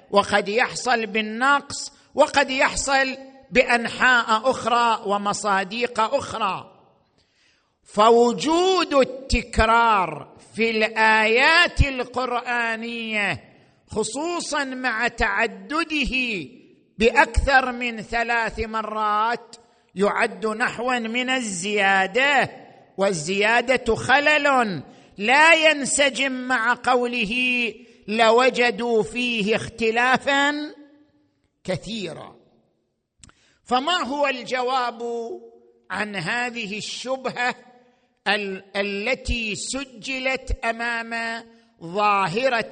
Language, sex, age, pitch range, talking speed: Arabic, male, 50-69, 205-255 Hz, 65 wpm